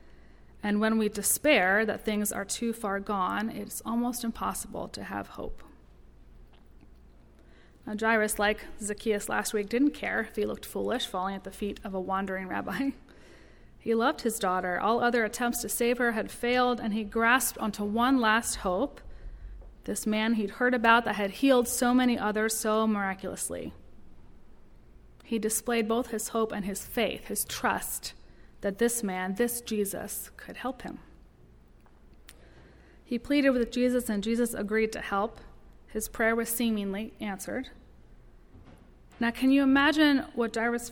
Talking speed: 155 wpm